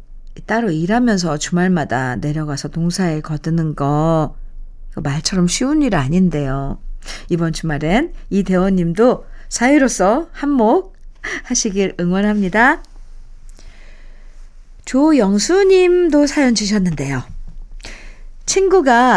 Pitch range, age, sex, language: 185-260 Hz, 50-69, female, Korean